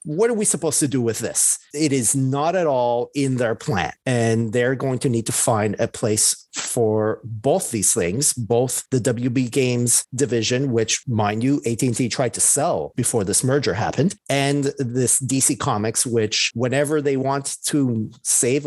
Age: 40-59